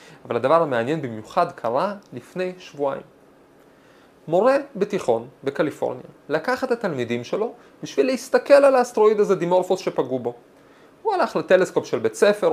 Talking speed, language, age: 135 wpm, Hebrew, 30-49